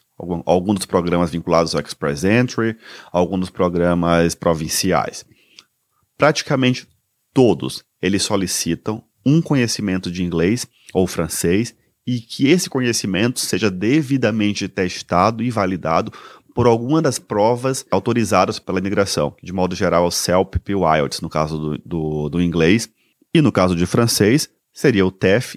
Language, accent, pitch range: Portuguese, Brazilian, 90-110 Hz